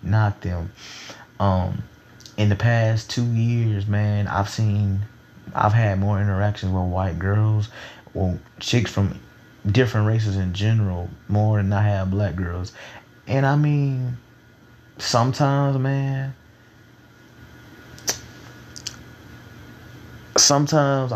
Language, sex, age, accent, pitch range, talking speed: English, male, 20-39, American, 100-120 Hz, 105 wpm